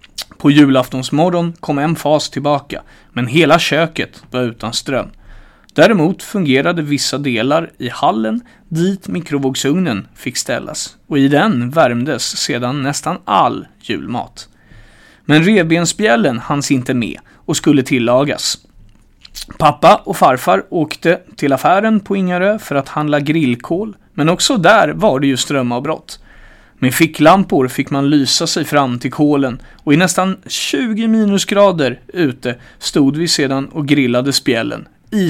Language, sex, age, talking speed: Swedish, male, 30-49, 135 wpm